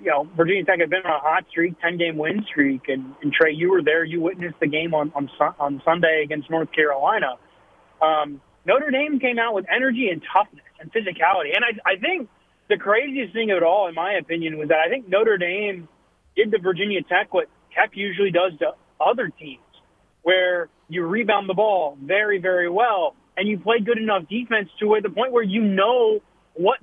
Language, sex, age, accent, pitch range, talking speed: English, male, 30-49, American, 180-245 Hz, 210 wpm